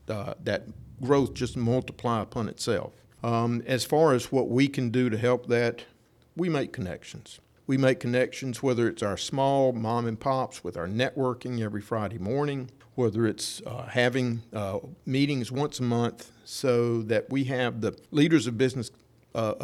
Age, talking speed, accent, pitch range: 50-69, 160 wpm, American, 115-130 Hz